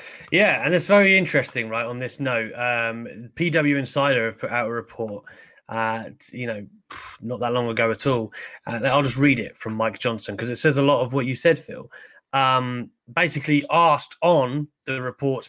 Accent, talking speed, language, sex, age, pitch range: British, 190 wpm, English, male, 30-49, 120-165 Hz